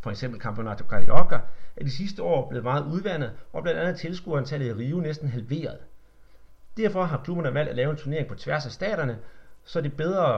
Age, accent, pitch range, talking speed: 40-59, native, 125-170 Hz, 190 wpm